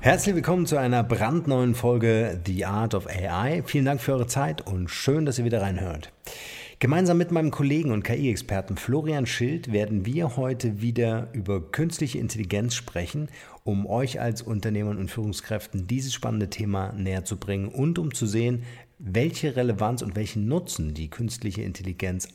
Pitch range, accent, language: 95-125 Hz, German, German